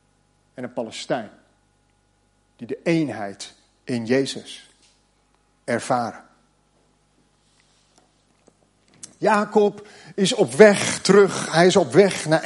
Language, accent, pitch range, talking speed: Dutch, Dutch, 125-200 Hz, 90 wpm